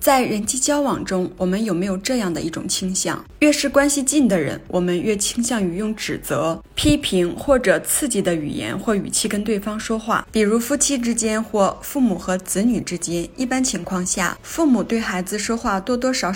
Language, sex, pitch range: Chinese, female, 195-255 Hz